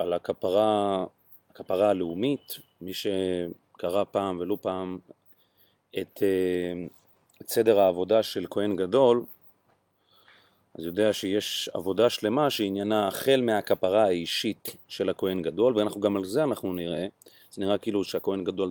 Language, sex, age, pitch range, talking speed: Hebrew, male, 30-49, 90-105 Hz, 125 wpm